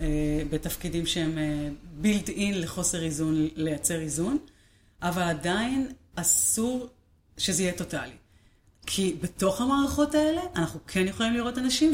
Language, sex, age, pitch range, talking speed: Hebrew, female, 30-49, 165-210 Hz, 115 wpm